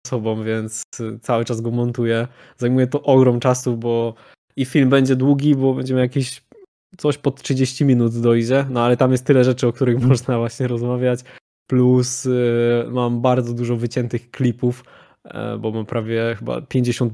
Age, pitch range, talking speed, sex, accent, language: 20-39, 115-130 Hz, 160 wpm, male, native, Polish